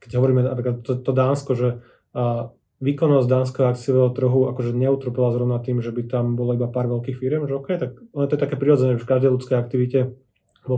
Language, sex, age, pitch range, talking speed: Slovak, male, 20-39, 120-130 Hz, 200 wpm